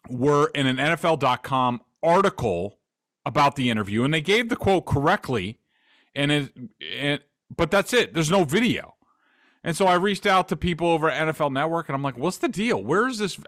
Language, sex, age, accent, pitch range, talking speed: English, male, 30-49, American, 130-190 Hz, 185 wpm